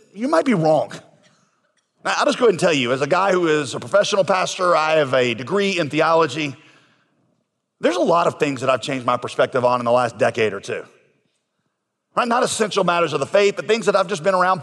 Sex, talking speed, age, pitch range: male, 230 wpm, 40-59, 145-195 Hz